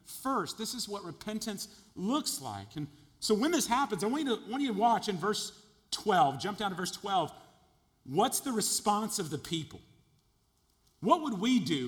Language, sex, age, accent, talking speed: English, male, 40-59, American, 195 wpm